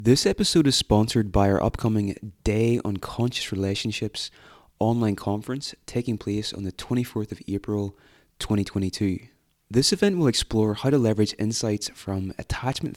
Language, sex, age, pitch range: English, male, 20-39, 100-120 Hz